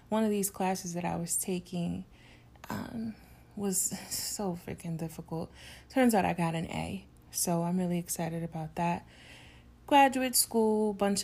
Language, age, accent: English, 30-49, American